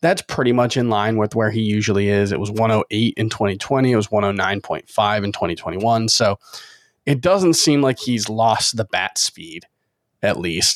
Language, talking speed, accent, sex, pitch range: English, 175 wpm, American, male, 110-130 Hz